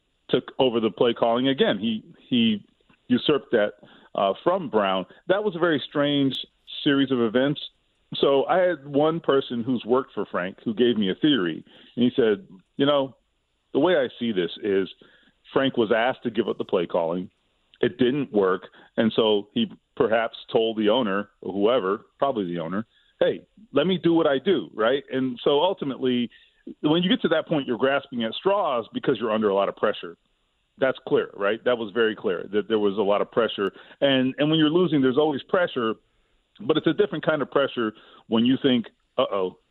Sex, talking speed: male, 200 wpm